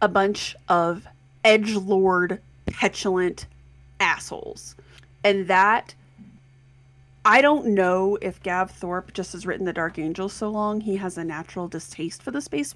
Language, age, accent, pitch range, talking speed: English, 30-49, American, 165-210 Hz, 140 wpm